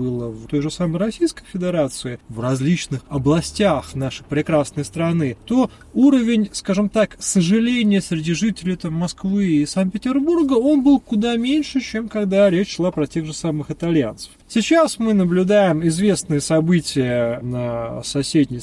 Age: 30-49